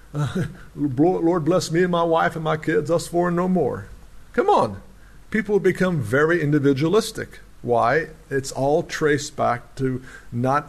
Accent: American